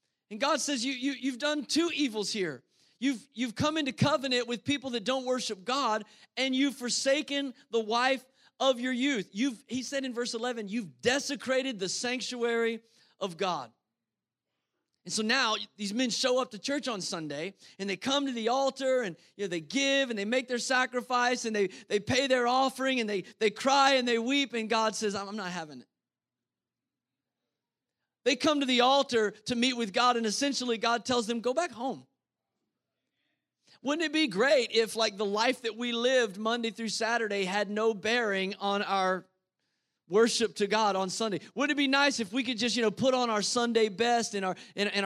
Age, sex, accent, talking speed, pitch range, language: 30-49, male, American, 200 wpm, 195-255 Hz, English